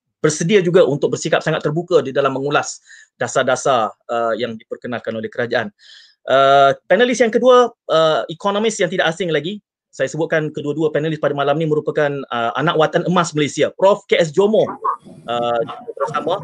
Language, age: Malay, 30-49